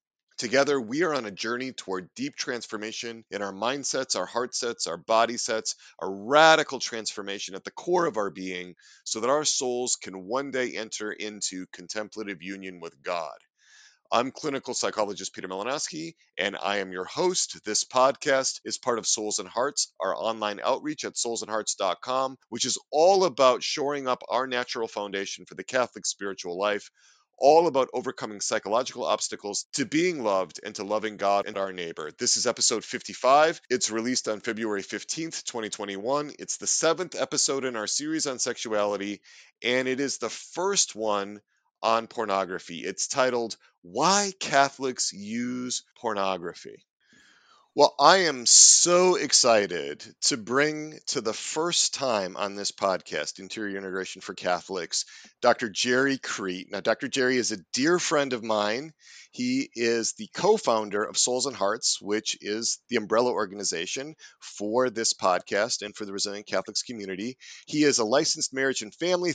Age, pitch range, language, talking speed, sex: 40-59, 105-140 Hz, English, 160 wpm, male